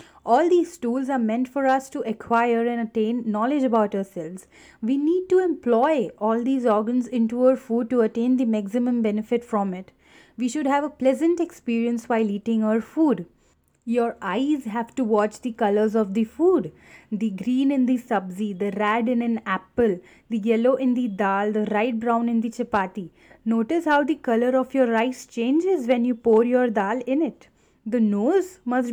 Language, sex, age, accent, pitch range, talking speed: English, female, 30-49, Indian, 220-265 Hz, 185 wpm